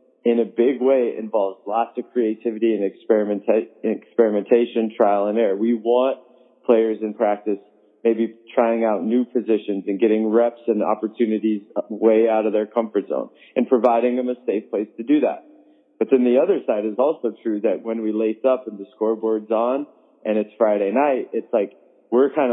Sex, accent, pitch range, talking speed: male, American, 110-125 Hz, 180 wpm